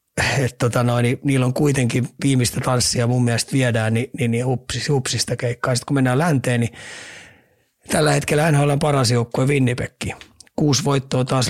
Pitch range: 120-135 Hz